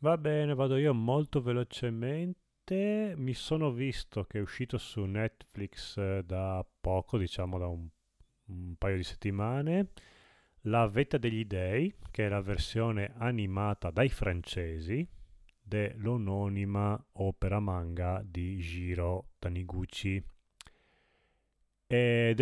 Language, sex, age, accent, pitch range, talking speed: Italian, male, 30-49, native, 90-115 Hz, 110 wpm